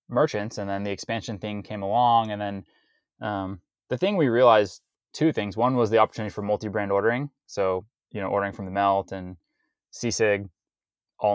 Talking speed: 180 wpm